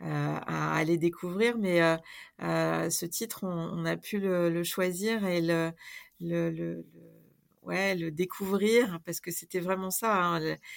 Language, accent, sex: French, French, female